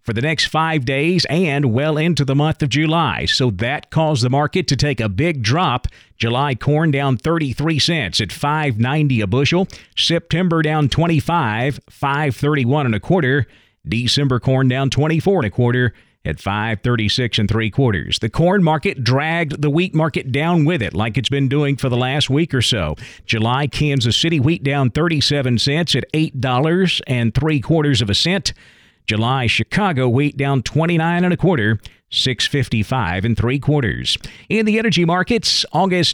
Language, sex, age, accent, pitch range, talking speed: English, male, 50-69, American, 120-160 Hz, 170 wpm